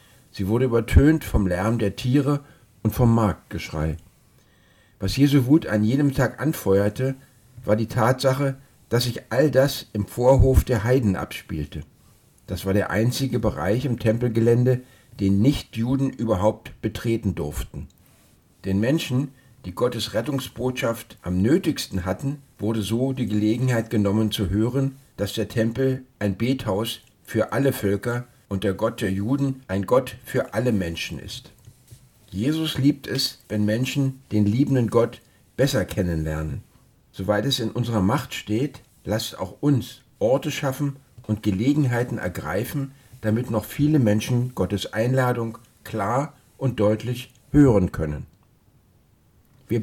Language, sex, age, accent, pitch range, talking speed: German, male, 50-69, German, 105-130 Hz, 135 wpm